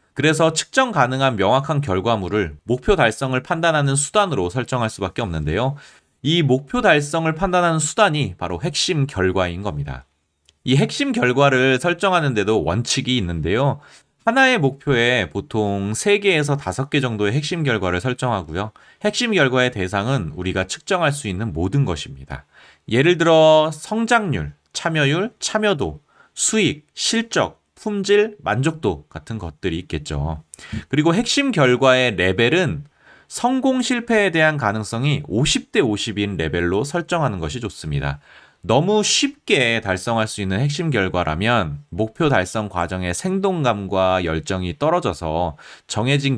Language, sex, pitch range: Korean, male, 95-160 Hz